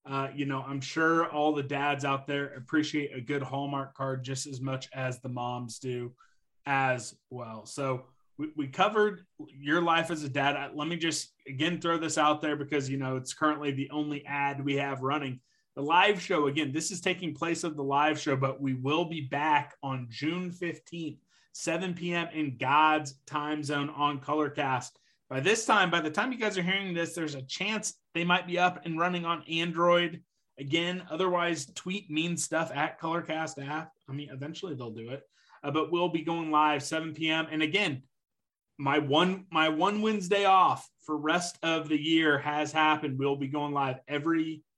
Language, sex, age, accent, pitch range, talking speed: English, male, 30-49, American, 135-165 Hz, 195 wpm